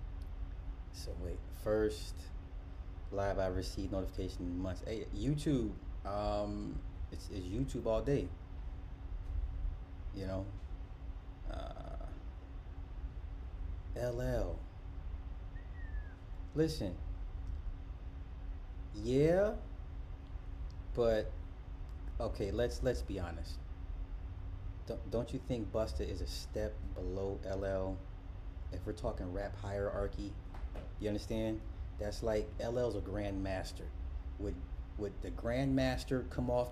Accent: American